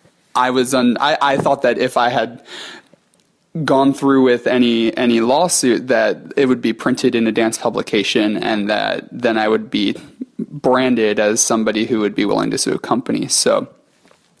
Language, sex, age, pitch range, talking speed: English, male, 20-39, 120-145 Hz, 185 wpm